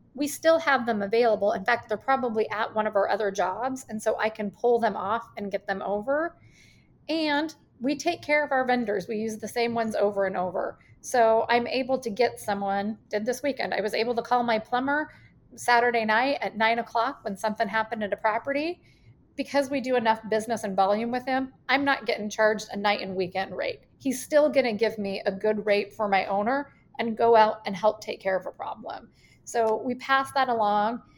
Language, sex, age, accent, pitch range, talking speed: English, female, 40-59, American, 215-265 Hz, 215 wpm